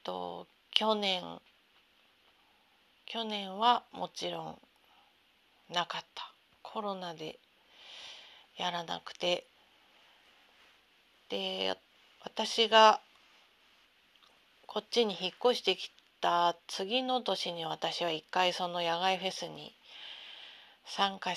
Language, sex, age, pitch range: Japanese, female, 40-59, 165-220 Hz